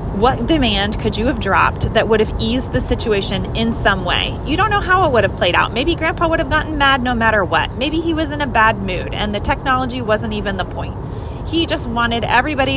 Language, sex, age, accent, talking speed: English, female, 30-49, American, 240 wpm